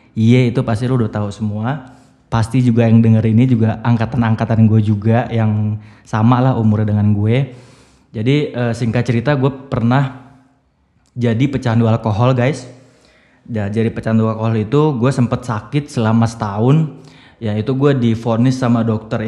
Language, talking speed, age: Indonesian, 150 wpm, 20-39